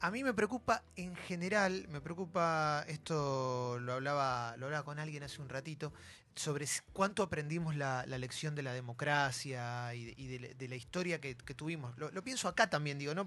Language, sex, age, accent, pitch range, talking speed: Spanish, male, 20-39, Argentinian, 130-175 Hz, 200 wpm